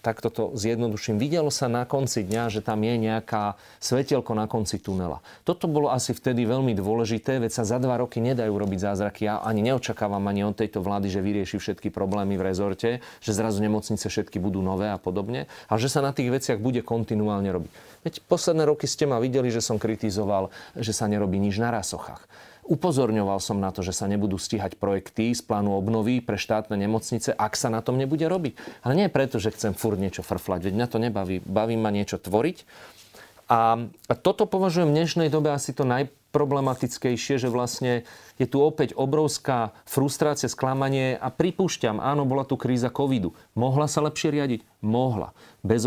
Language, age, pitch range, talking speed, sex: Slovak, 40-59, 105-135 Hz, 185 wpm, male